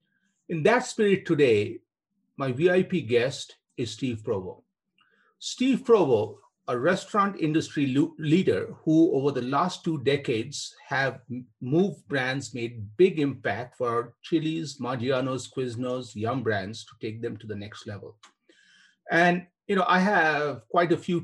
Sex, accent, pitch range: male, Indian, 130-180 Hz